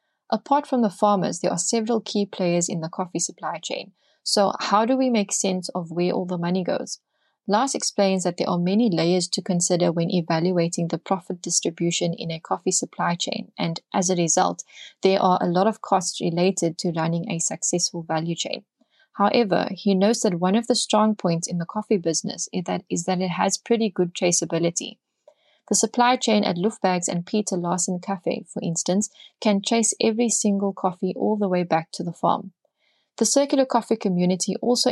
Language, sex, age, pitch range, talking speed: English, female, 20-39, 175-215 Hz, 190 wpm